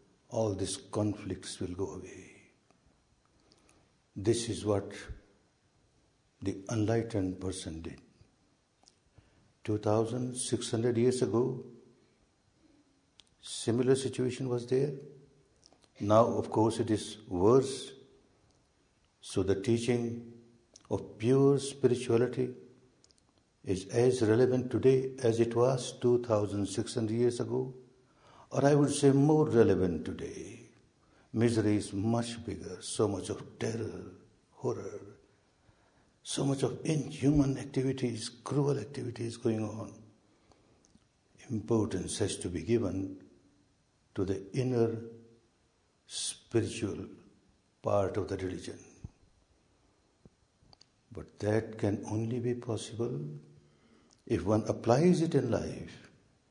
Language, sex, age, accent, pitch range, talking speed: English, male, 60-79, Indian, 100-125 Hz, 100 wpm